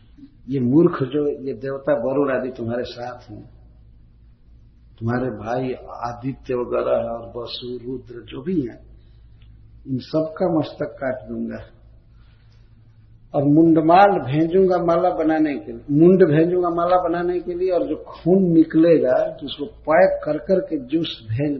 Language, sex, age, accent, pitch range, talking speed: Hindi, male, 50-69, native, 115-170 Hz, 135 wpm